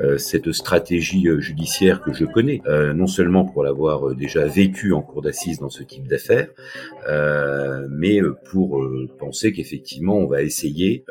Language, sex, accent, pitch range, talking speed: French, male, French, 70-90 Hz, 155 wpm